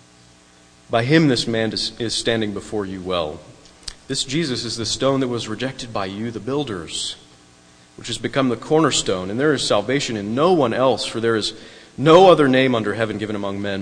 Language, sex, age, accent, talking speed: English, male, 30-49, American, 195 wpm